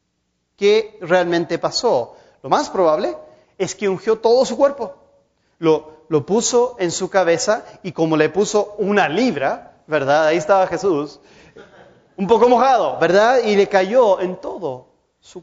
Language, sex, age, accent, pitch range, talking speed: Spanish, male, 30-49, Mexican, 155-250 Hz, 150 wpm